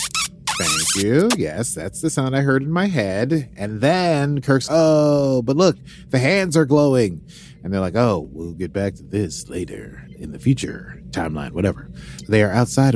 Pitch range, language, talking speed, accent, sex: 95-135 Hz, English, 180 wpm, American, male